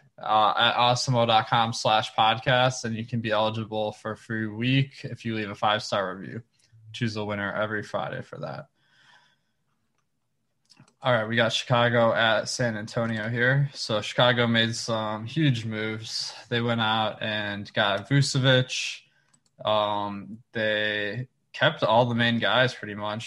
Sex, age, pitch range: male, 20-39, 110-125 Hz